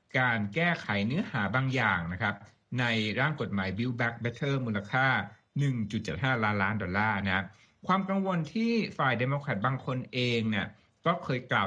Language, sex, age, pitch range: Thai, male, 60-79, 105-145 Hz